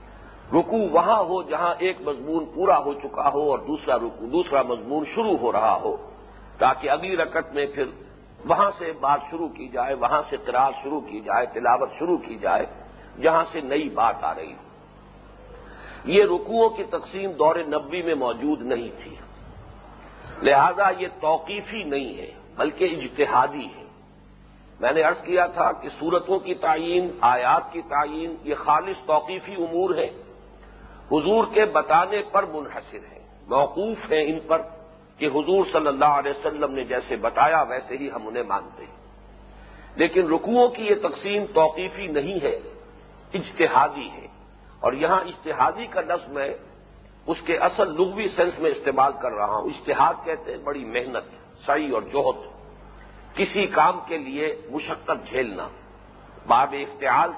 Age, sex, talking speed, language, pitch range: 50-69, male, 140 wpm, English, 155-220 Hz